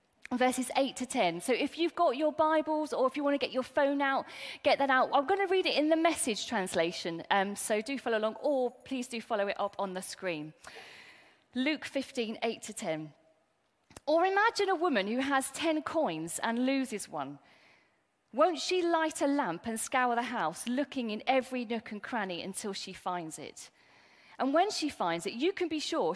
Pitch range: 215-295 Hz